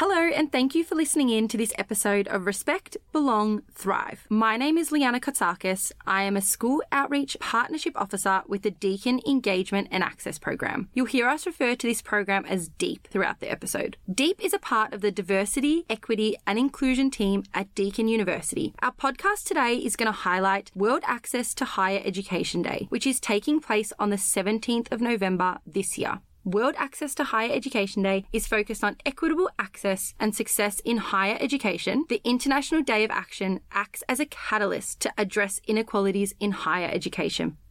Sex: female